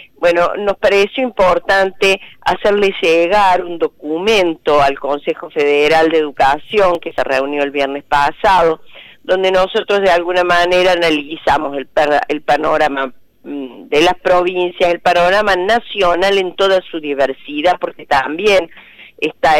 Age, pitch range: 40-59, 155-195 Hz